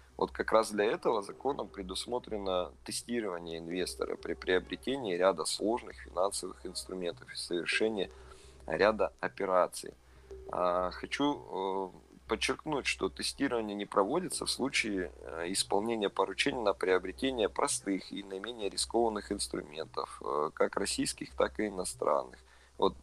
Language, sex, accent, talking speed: Russian, male, native, 110 wpm